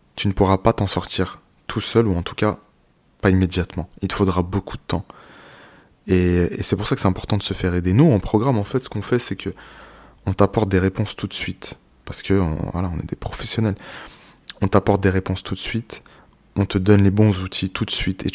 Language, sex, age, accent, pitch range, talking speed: French, male, 20-39, French, 95-105 Hz, 240 wpm